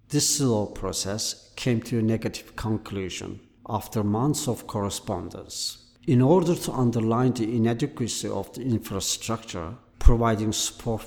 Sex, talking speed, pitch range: male, 125 wpm, 105-120 Hz